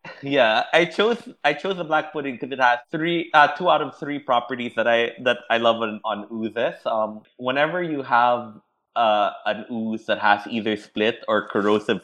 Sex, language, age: male, English, 20-39